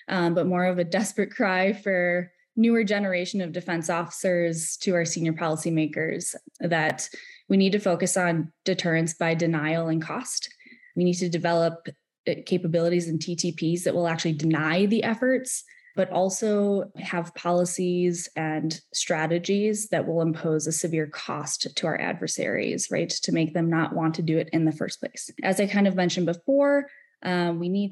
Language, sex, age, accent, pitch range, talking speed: English, female, 20-39, American, 165-190 Hz, 170 wpm